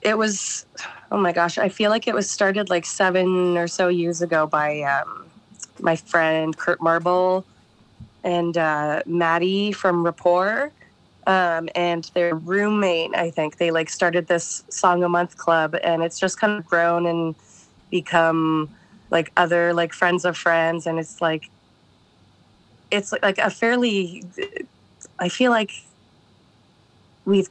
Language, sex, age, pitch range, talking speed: English, female, 20-39, 165-195 Hz, 145 wpm